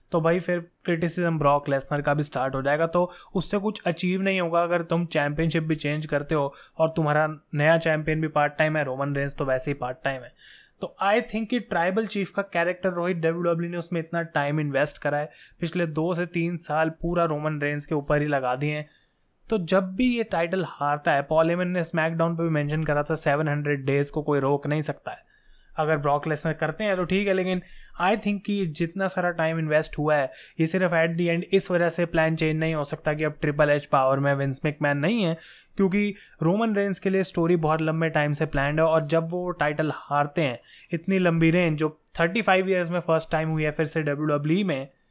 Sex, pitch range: male, 150-175 Hz